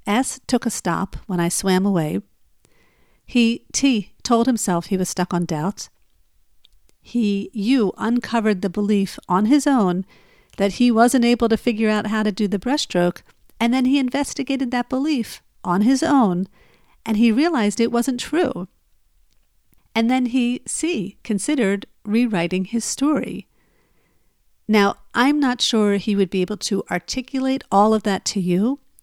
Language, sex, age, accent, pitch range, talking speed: English, female, 50-69, American, 190-245 Hz, 155 wpm